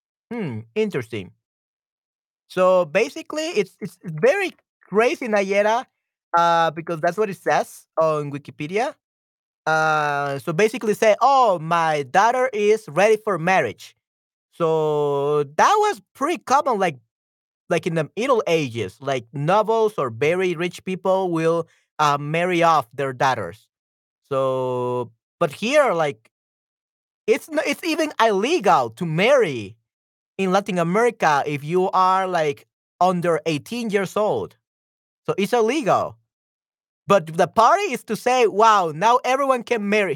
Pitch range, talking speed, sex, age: 150-220 Hz, 130 wpm, male, 30-49